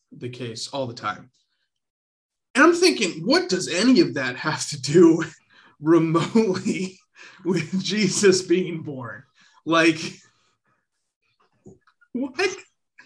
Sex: male